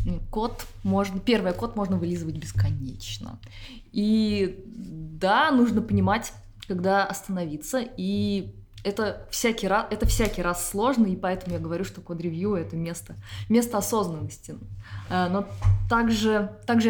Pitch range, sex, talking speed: 170-215 Hz, female, 125 wpm